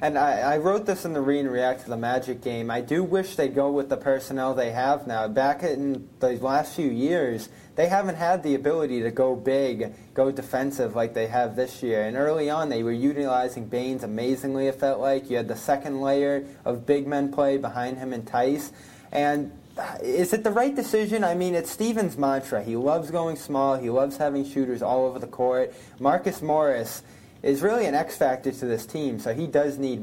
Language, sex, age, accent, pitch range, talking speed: English, male, 20-39, American, 125-160 Hz, 210 wpm